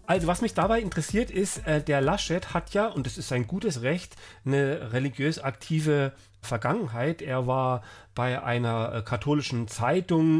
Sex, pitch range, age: male, 120-160 Hz, 40-59